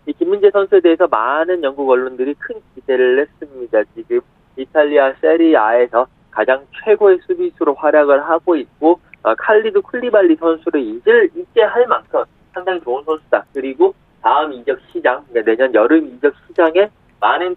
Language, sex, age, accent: Korean, male, 40-59, native